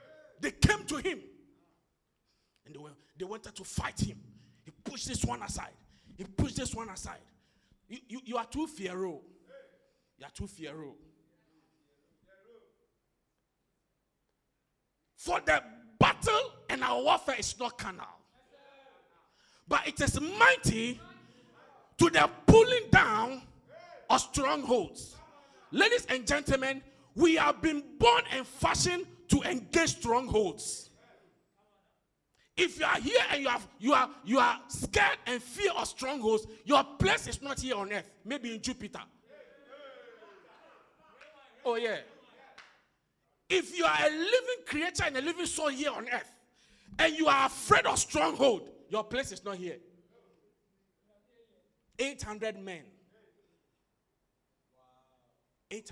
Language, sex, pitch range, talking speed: English, male, 190-310 Hz, 125 wpm